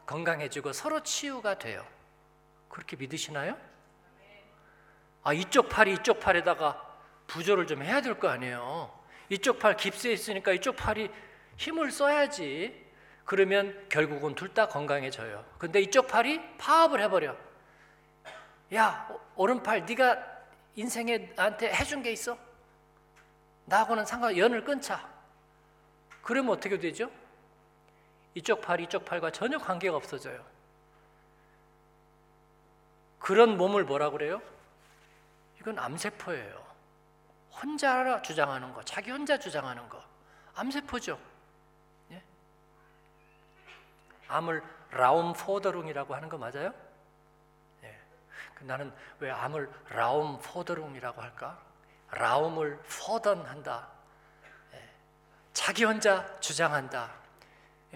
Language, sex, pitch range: Korean, male, 155-235 Hz